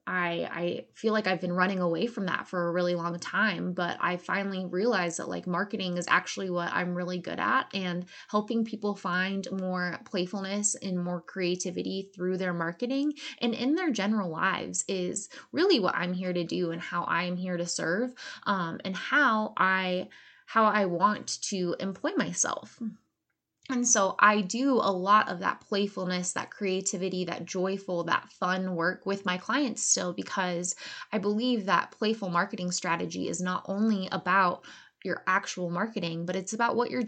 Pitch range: 180-220 Hz